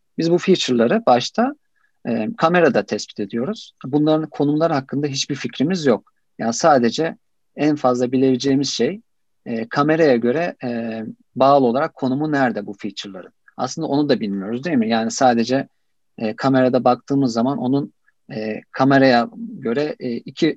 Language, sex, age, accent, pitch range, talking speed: Turkish, male, 50-69, native, 115-155 Hz, 140 wpm